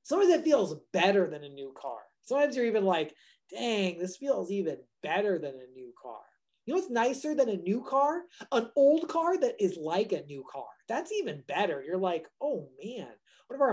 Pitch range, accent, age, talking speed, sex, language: 185-280 Hz, American, 30-49, 210 wpm, male, English